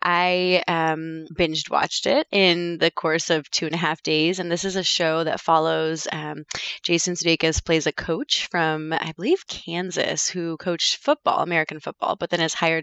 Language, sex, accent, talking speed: English, female, American, 185 wpm